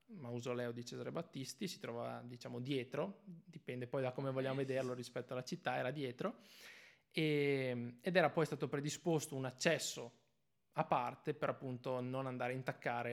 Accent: native